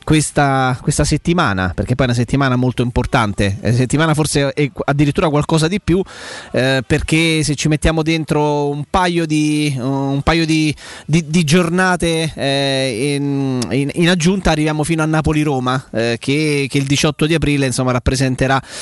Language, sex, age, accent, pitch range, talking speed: Italian, male, 20-39, native, 140-160 Hz, 160 wpm